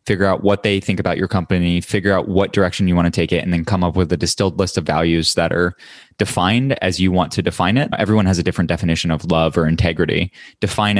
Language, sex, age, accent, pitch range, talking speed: English, male, 20-39, American, 90-105 Hz, 250 wpm